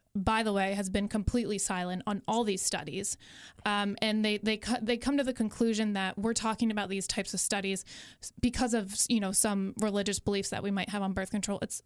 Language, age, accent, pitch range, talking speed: English, 20-39, American, 195-230 Hz, 220 wpm